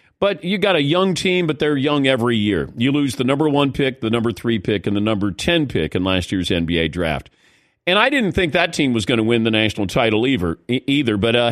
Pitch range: 115-155 Hz